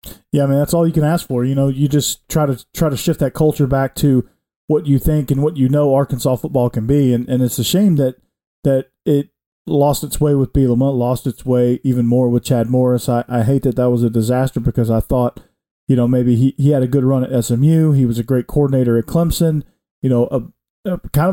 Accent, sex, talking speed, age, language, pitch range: American, male, 250 wpm, 40-59, English, 125-145 Hz